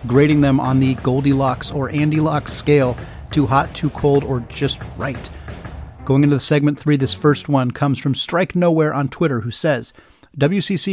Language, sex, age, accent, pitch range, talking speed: English, male, 30-49, American, 125-150 Hz, 175 wpm